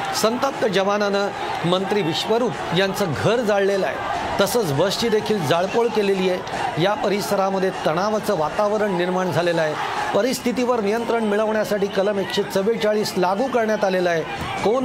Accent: native